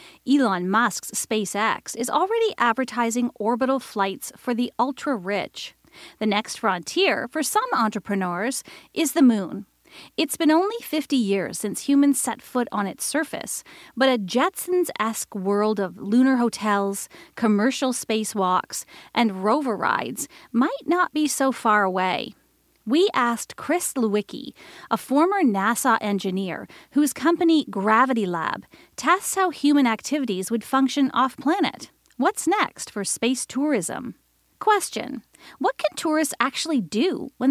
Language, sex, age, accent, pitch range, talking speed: English, female, 30-49, American, 215-300 Hz, 130 wpm